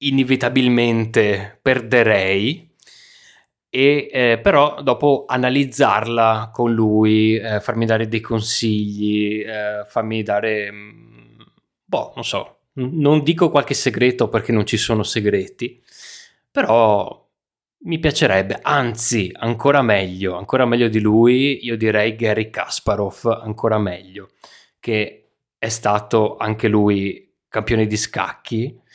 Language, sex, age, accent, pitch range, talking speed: Italian, male, 20-39, native, 105-130 Hz, 110 wpm